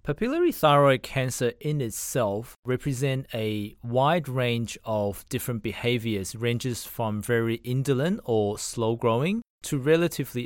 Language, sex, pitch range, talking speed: English, male, 110-140 Hz, 115 wpm